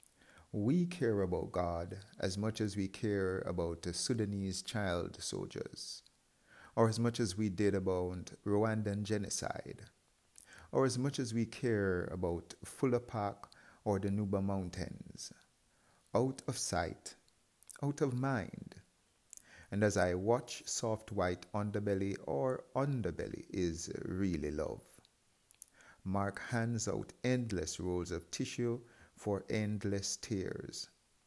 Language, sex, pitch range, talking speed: English, male, 95-115 Hz, 125 wpm